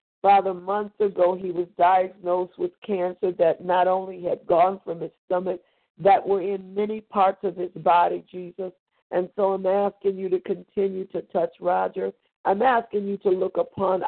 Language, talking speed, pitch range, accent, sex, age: English, 175 wpm, 180-205 Hz, American, female, 50-69